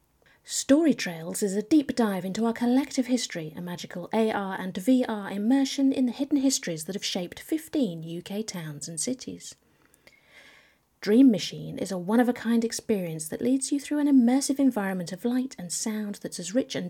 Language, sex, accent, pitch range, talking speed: English, female, British, 180-260 Hz, 180 wpm